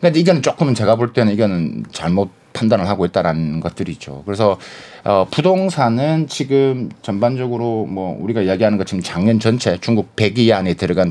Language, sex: Korean, male